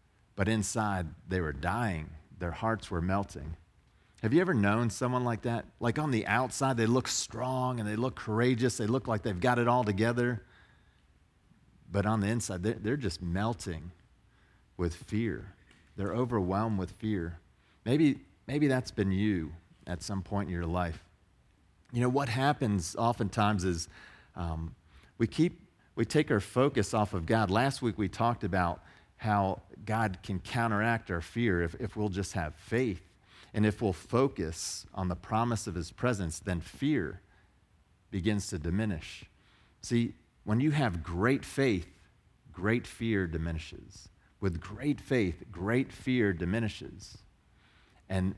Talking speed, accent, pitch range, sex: 155 wpm, American, 90-115 Hz, male